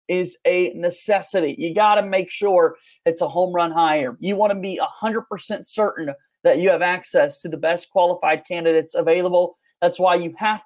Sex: male